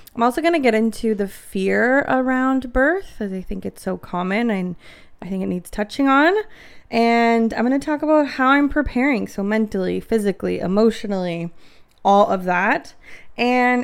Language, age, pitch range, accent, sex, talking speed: English, 20-39, 200-250 Hz, American, female, 175 wpm